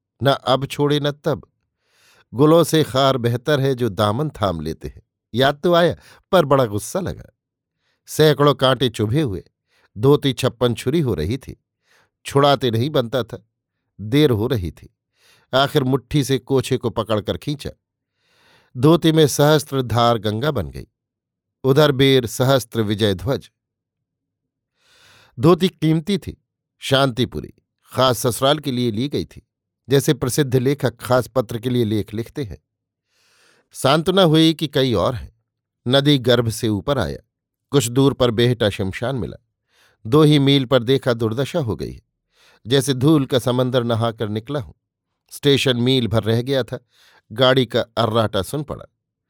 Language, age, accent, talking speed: Hindi, 50-69, native, 150 wpm